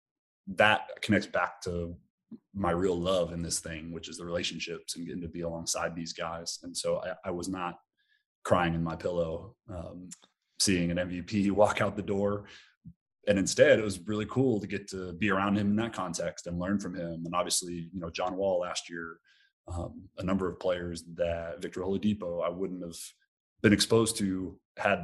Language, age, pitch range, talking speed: English, 30-49, 85-95 Hz, 195 wpm